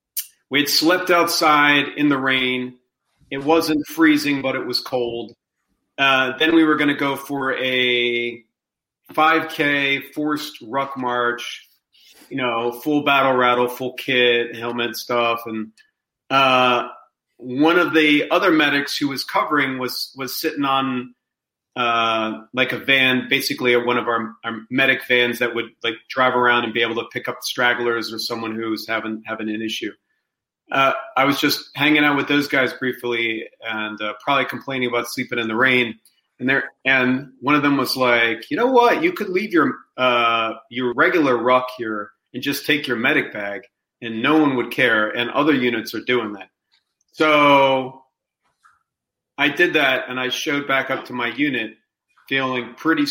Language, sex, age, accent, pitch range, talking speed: English, male, 40-59, American, 120-145 Hz, 165 wpm